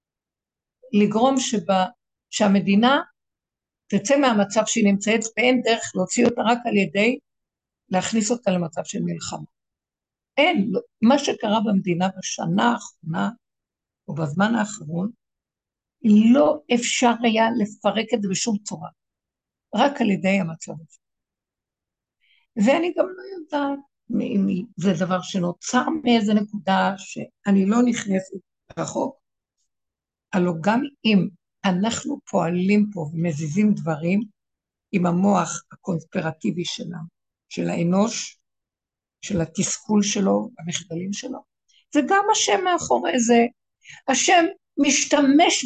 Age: 60-79